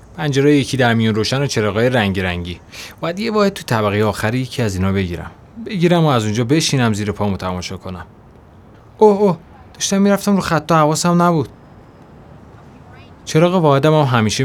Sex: male